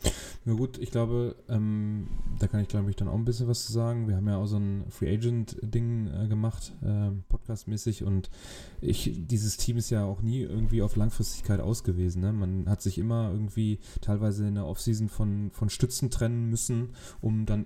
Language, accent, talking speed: German, German, 210 wpm